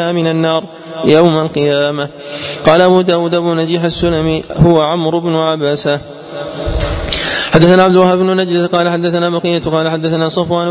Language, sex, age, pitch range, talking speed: Arabic, male, 20-39, 155-175 Hz, 135 wpm